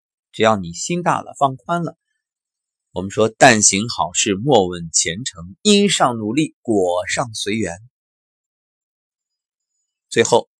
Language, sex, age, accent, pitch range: Chinese, male, 30-49, native, 95-155 Hz